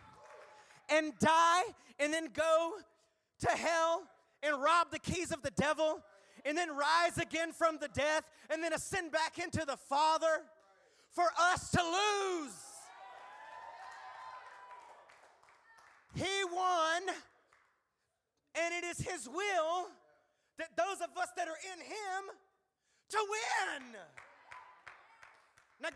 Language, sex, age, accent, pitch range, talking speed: English, male, 30-49, American, 230-350 Hz, 115 wpm